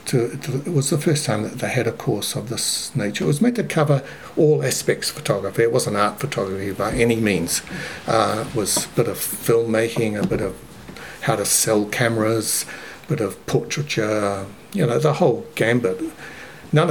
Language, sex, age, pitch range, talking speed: English, male, 60-79, 110-145 Hz, 190 wpm